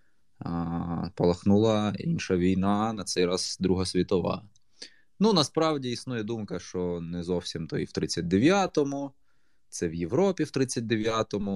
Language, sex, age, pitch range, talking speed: Ukrainian, male, 20-39, 85-105 Hz, 130 wpm